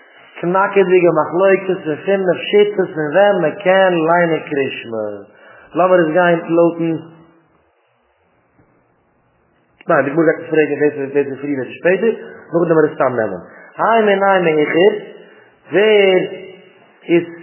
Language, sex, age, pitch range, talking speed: English, male, 30-49, 150-180 Hz, 85 wpm